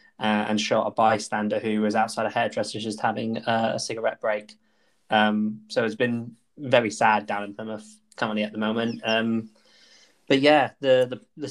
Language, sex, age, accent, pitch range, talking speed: English, male, 20-39, British, 110-115 Hz, 180 wpm